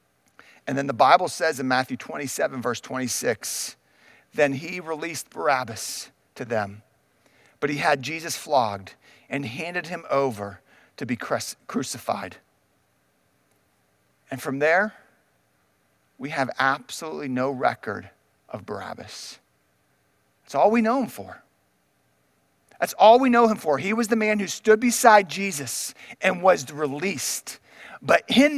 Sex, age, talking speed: male, 40-59, 130 wpm